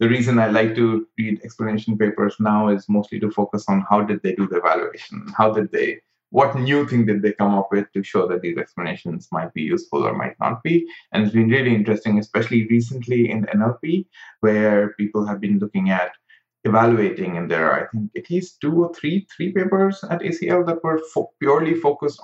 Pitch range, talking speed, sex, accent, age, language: 105-160 Hz, 210 wpm, male, Indian, 20-39, English